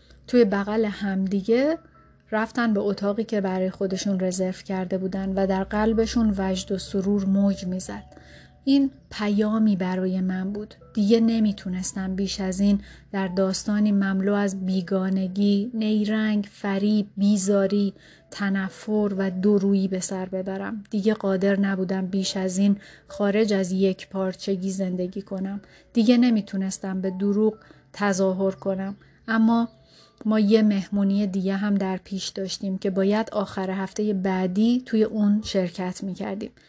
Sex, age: female, 30-49